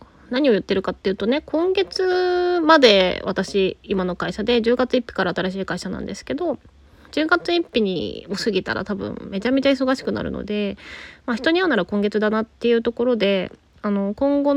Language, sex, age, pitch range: Japanese, female, 20-39, 195-275 Hz